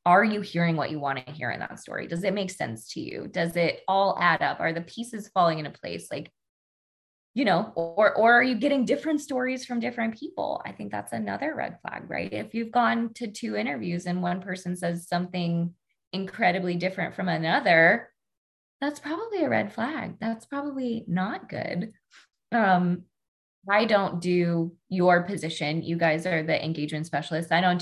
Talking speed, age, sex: 185 wpm, 20-39, female